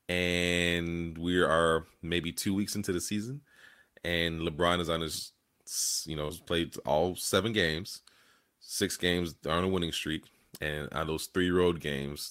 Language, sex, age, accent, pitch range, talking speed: English, male, 30-49, American, 80-100 Hz, 155 wpm